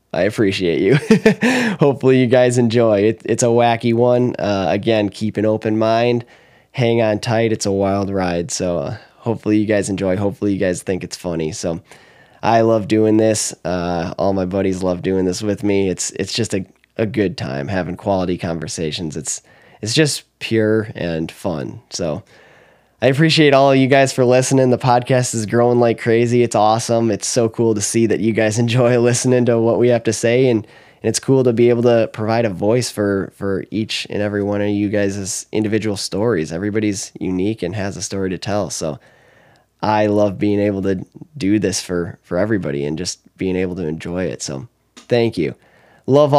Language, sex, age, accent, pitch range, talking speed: English, male, 10-29, American, 100-120 Hz, 195 wpm